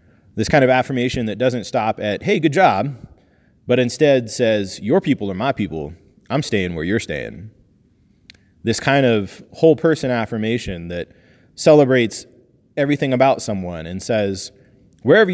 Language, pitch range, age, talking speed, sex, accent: English, 100-140 Hz, 30-49, 150 wpm, male, American